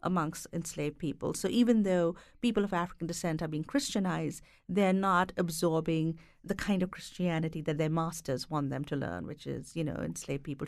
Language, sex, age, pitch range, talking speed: English, female, 50-69, 160-200 Hz, 185 wpm